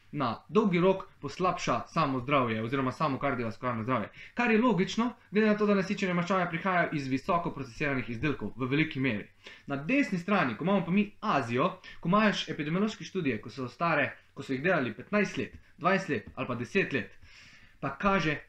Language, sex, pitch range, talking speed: English, male, 135-195 Hz, 180 wpm